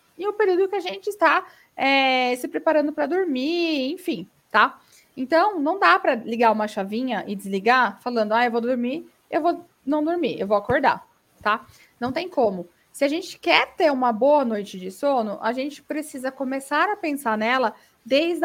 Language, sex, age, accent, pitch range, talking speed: Portuguese, female, 20-39, Brazilian, 235-310 Hz, 185 wpm